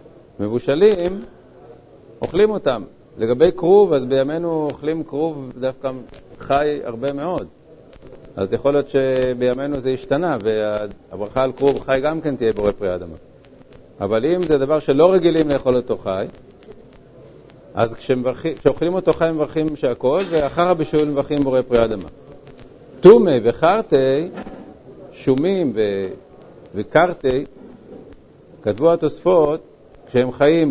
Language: Hebrew